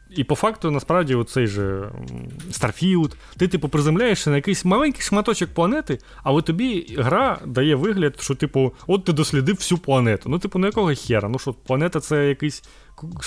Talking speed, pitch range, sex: 165 wpm, 110-150 Hz, male